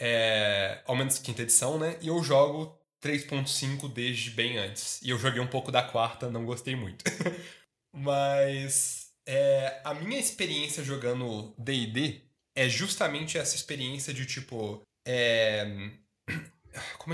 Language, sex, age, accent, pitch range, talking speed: Portuguese, male, 20-39, Brazilian, 120-165 Hz, 135 wpm